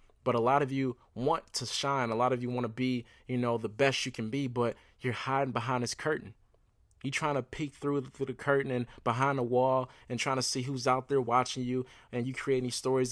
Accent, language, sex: American, English, male